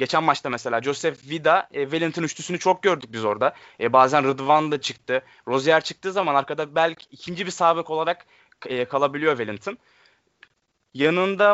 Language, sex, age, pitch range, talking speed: Turkish, male, 20-39, 130-160 Hz, 155 wpm